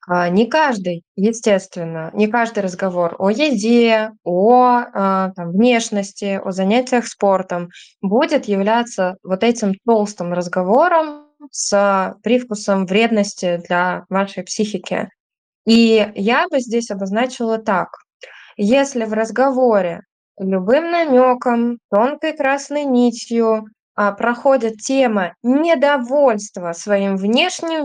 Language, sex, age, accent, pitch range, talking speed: Russian, female, 20-39, native, 195-250 Hz, 95 wpm